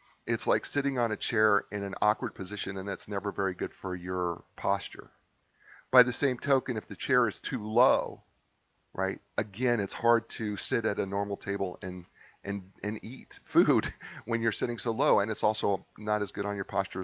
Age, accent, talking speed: 40-59, American, 200 wpm